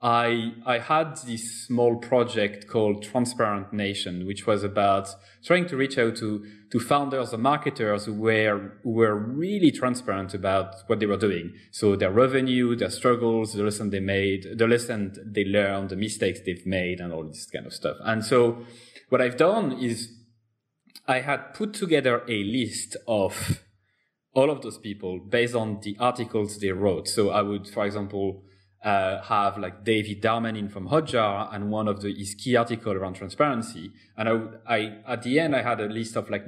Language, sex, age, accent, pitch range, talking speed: English, male, 20-39, French, 100-125 Hz, 185 wpm